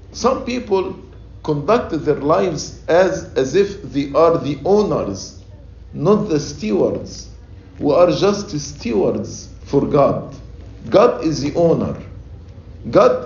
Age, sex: 50-69, male